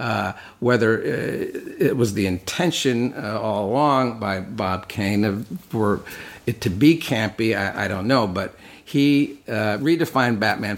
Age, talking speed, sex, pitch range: 50-69, 145 wpm, male, 110-140 Hz